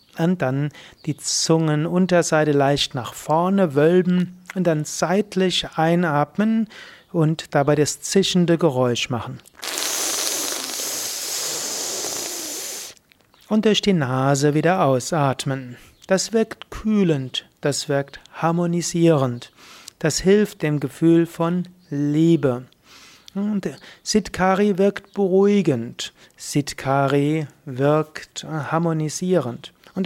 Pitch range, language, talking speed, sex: 140-185 Hz, German, 85 wpm, male